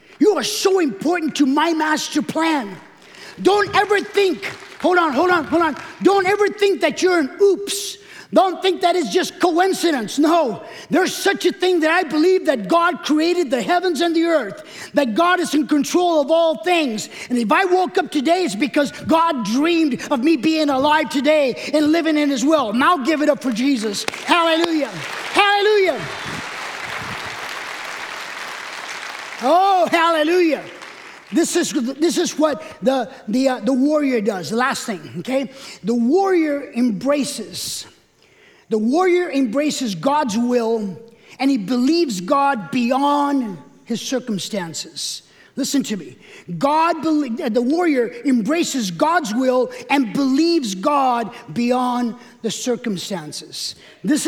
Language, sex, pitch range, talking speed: English, male, 250-335 Hz, 145 wpm